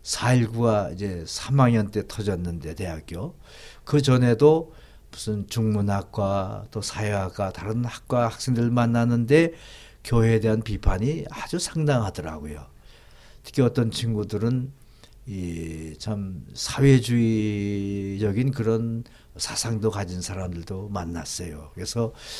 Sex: male